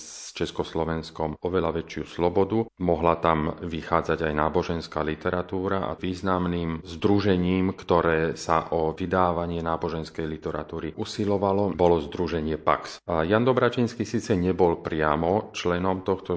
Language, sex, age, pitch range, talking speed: Slovak, male, 40-59, 80-90 Hz, 115 wpm